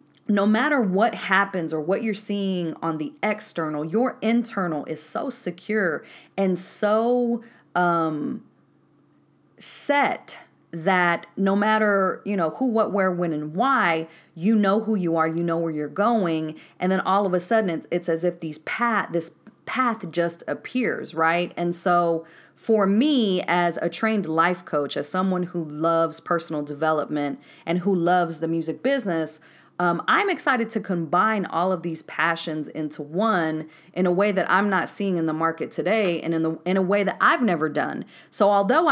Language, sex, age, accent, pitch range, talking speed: English, female, 30-49, American, 160-210 Hz, 170 wpm